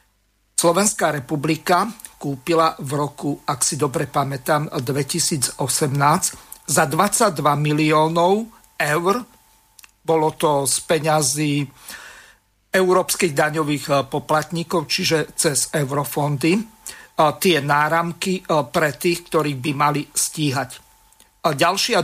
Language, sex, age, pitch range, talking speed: Slovak, male, 50-69, 150-190 Hz, 95 wpm